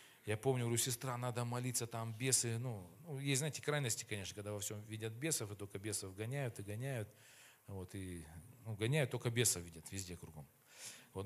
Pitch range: 110-140 Hz